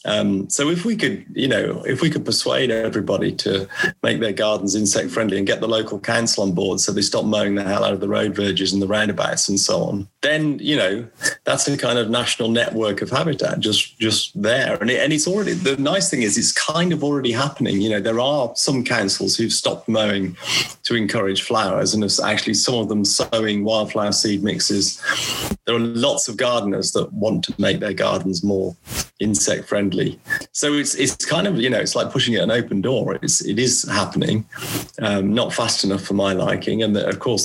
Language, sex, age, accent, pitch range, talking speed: English, male, 30-49, British, 100-115 Hz, 220 wpm